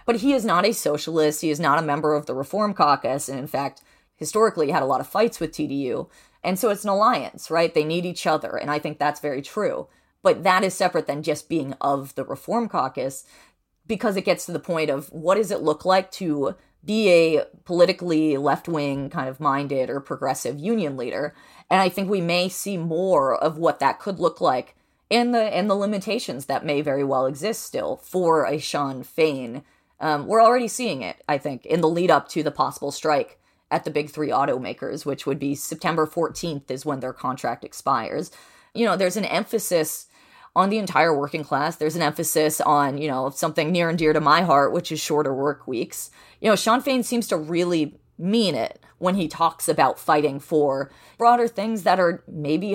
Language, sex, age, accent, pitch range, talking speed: English, female, 30-49, American, 150-190 Hz, 210 wpm